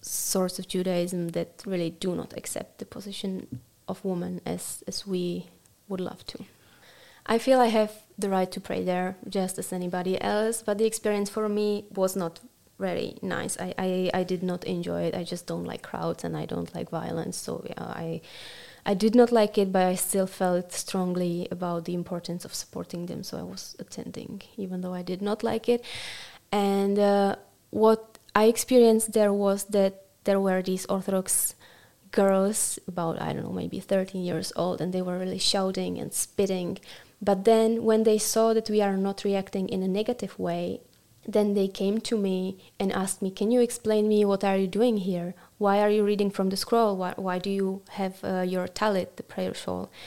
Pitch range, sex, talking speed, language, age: 185-210 Hz, female, 195 wpm, Czech, 20-39